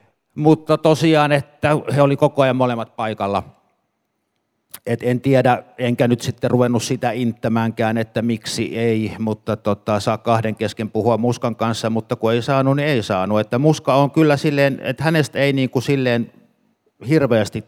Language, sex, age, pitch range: Finnish, male, 60-79, 110-130 Hz